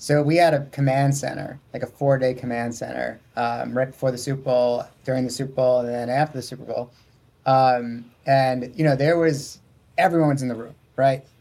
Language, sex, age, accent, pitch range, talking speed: English, male, 30-49, American, 125-140 Hz, 205 wpm